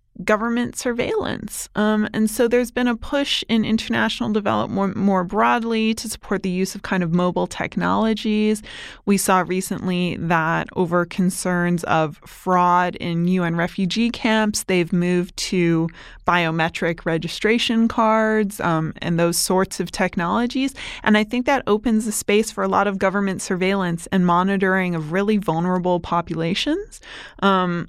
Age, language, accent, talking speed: 20-39, English, American, 140 wpm